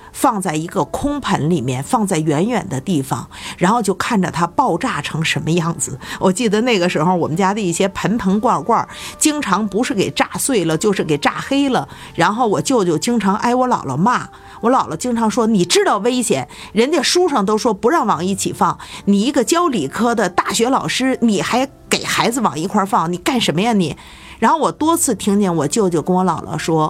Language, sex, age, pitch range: Chinese, female, 50-69, 170-235 Hz